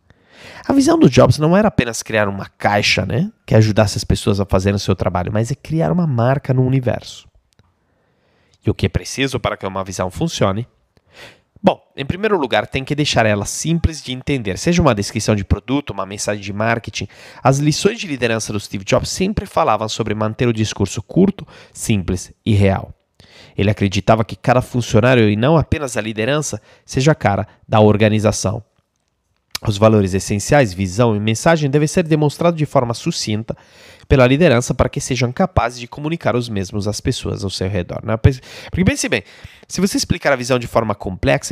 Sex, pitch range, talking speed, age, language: male, 105-145 Hz, 185 wpm, 30-49, Portuguese